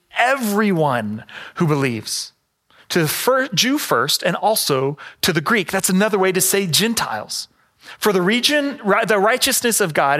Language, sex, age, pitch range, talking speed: English, male, 30-49, 140-200 Hz, 155 wpm